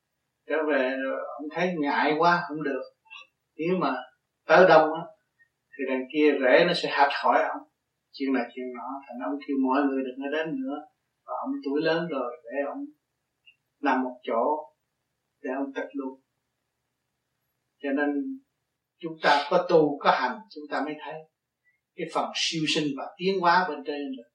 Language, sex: Vietnamese, male